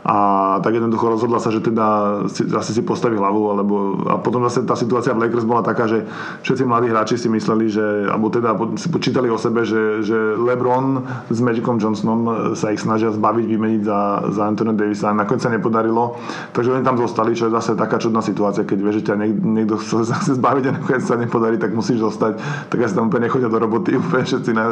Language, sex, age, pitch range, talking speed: Slovak, male, 20-39, 105-120 Hz, 205 wpm